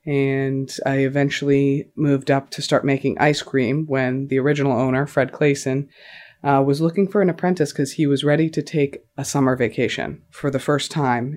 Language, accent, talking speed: English, American, 185 wpm